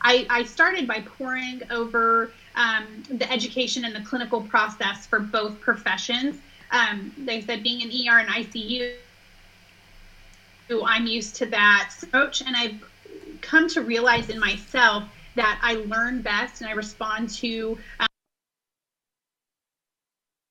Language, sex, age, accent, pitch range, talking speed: English, female, 30-49, American, 215-245 Hz, 130 wpm